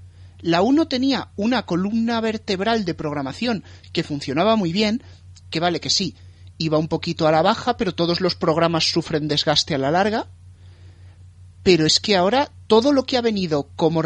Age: 30-49